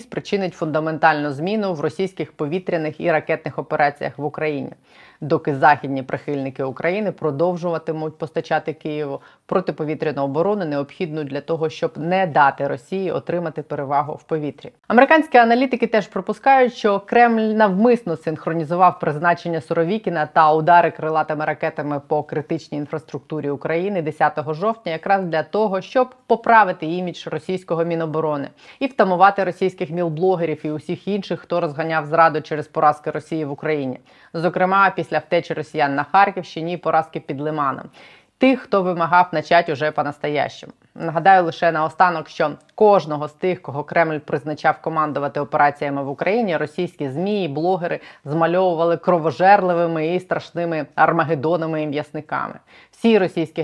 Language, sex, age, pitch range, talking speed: Ukrainian, female, 20-39, 150-180 Hz, 130 wpm